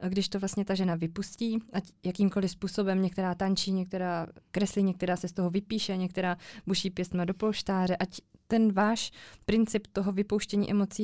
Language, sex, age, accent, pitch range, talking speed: Czech, female, 20-39, native, 190-225 Hz, 165 wpm